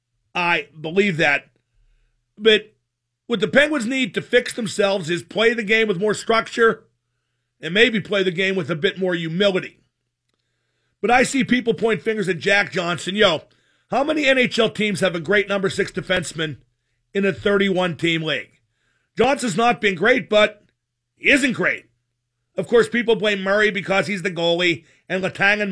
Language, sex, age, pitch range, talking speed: English, male, 50-69, 165-230 Hz, 170 wpm